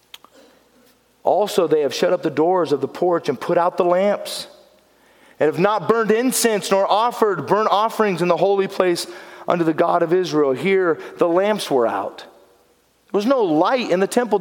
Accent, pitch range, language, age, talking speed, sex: American, 185-275 Hz, English, 40-59, 185 wpm, male